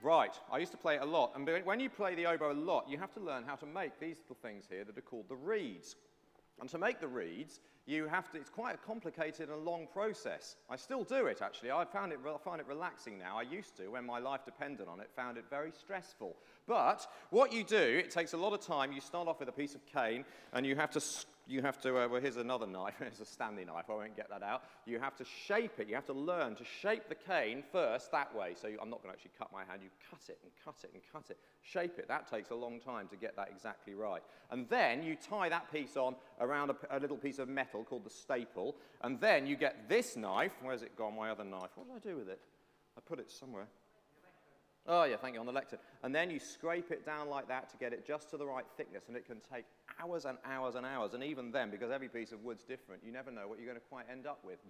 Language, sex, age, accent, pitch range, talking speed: English, male, 40-59, British, 125-170 Hz, 275 wpm